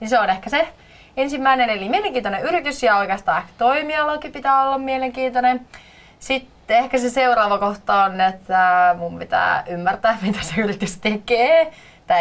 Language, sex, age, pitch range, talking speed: Finnish, female, 20-39, 190-250 Hz, 145 wpm